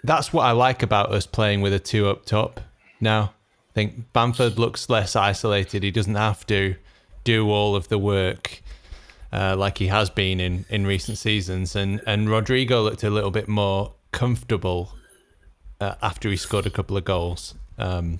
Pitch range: 95-115 Hz